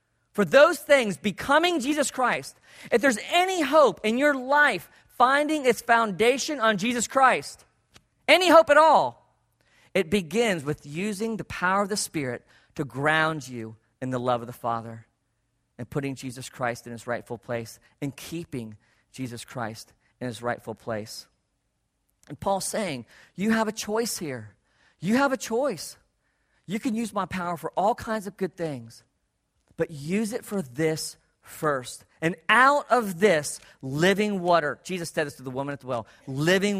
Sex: male